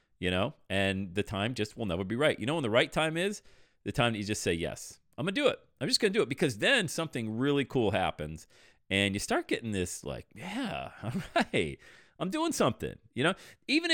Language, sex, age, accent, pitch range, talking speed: English, male, 40-59, American, 95-150 Hz, 240 wpm